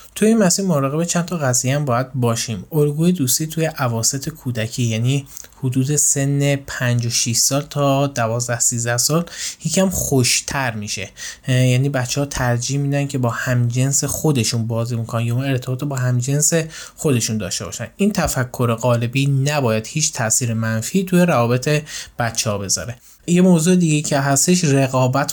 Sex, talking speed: male, 155 wpm